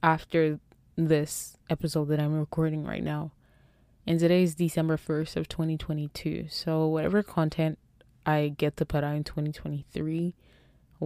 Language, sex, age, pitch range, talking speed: English, female, 20-39, 155-170 Hz, 135 wpm